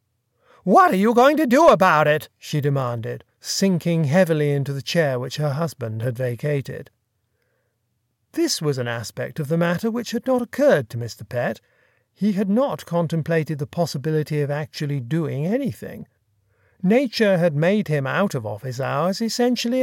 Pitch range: 145-220 Hz